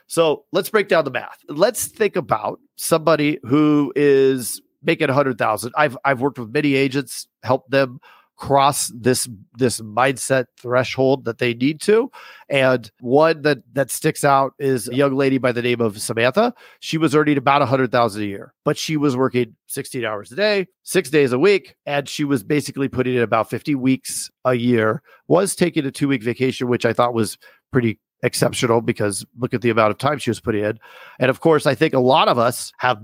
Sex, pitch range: male, 115-145 Hz